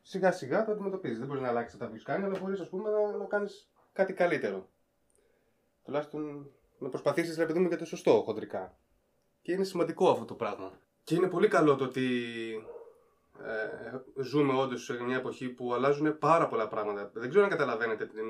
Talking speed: 185 wpm